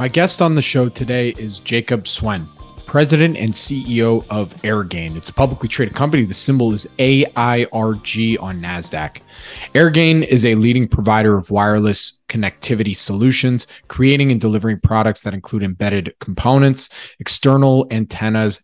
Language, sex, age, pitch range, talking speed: English, male, 20-39, 105-130 Hz, 140 wpm